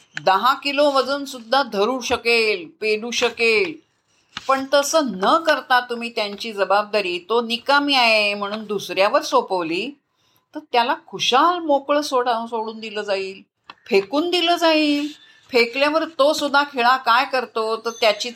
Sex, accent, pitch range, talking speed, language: female, native, 205-280 Hz, 130 wpm, Marathi